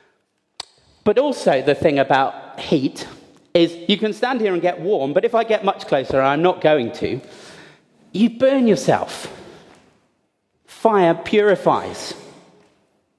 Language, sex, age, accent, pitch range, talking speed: English, male, 40-59, British, 165-230 Hz, 135 wpm